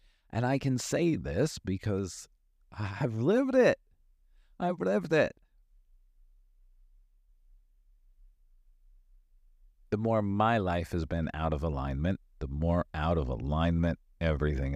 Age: 50-69